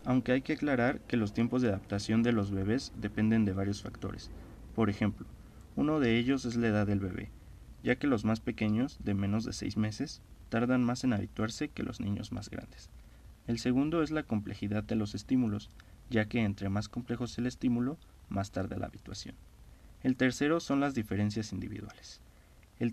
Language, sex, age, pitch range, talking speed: Spanish, male, 20-39, 100-125 Hz, 190 wpm